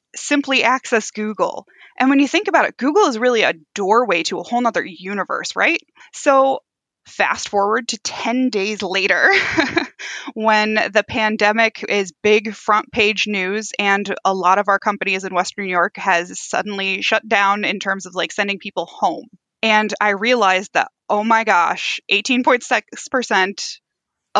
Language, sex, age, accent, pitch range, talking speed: English, female, 20-39, American, 200-270 Hz, 155 wpm